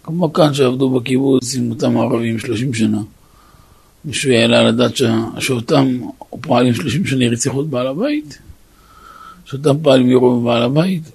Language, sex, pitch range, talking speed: Hebrew, male, 105-130 Hz, 140 wpm